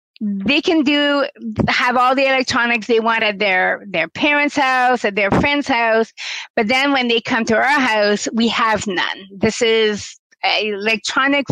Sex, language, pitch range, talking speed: female, English, 220-270 Hz, 170 wpm